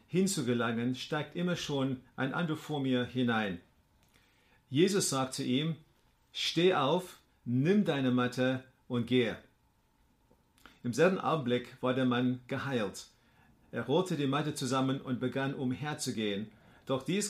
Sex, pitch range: male, 125-150 Hz